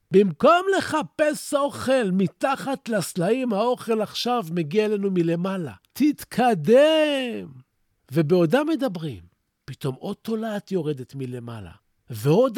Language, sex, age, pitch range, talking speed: Hebrew, male, 50-69, 145-240 Hz, 90 wpm